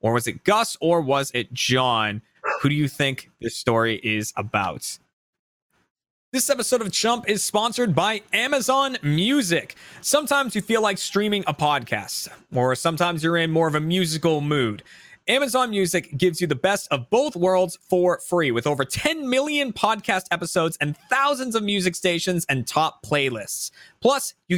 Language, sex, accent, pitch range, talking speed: English, male, American, 145-200 Hz, 165 wpm